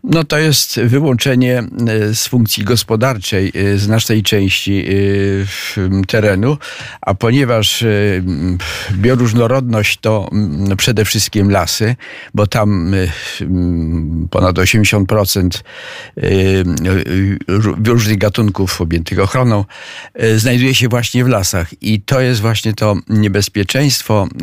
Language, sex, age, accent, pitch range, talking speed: Polish, male, 50-69, native, 95-120 Hz, 90 wpm